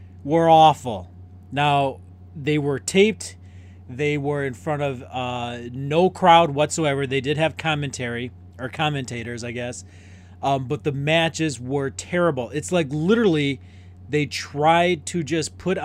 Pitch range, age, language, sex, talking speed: 115-160 Hz, 30-49, English, male, 140 wpm